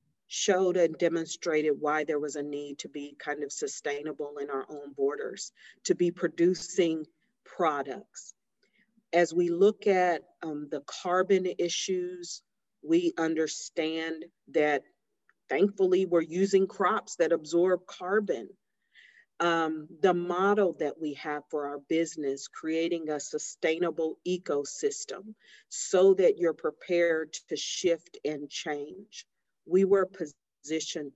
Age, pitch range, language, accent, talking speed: 40-59, 150-180 Hz, English, American, 120 wpm